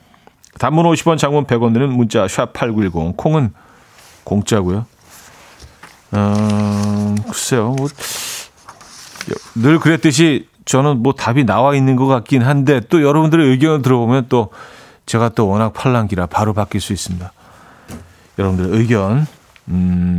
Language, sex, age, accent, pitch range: Korean, male, 40-59, native, 105-150 Hz